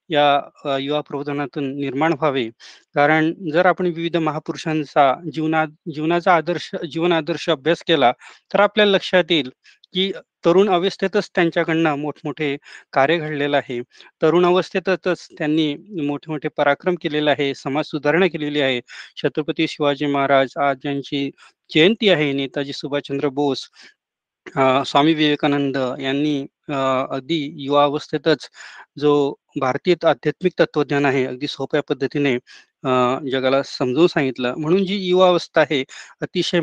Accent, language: native, Marathi